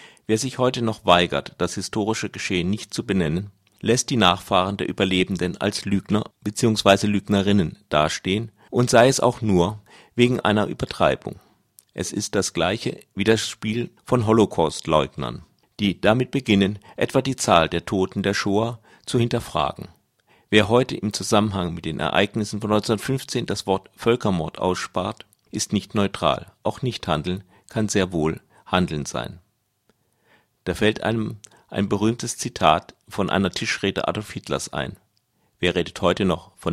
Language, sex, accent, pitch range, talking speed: German, male, German, 90-110 Hz, 150 wpm